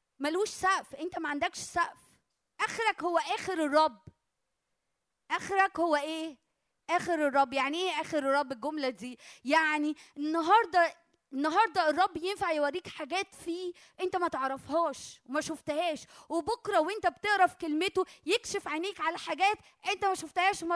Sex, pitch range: female, 290-370 Hz